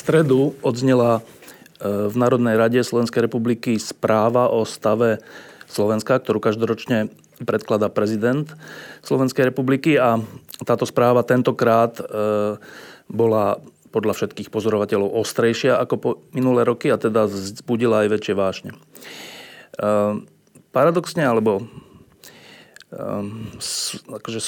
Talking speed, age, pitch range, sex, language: 95 wpm, 30-49, 110-130 Hz, male, Slovak